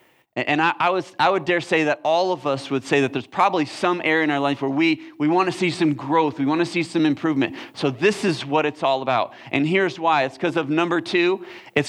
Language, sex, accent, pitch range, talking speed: English, male, American, 140-175 Hz, 260 wpm